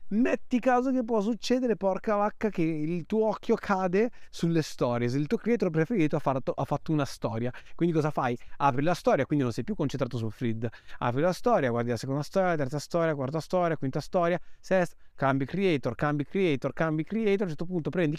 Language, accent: Italian, native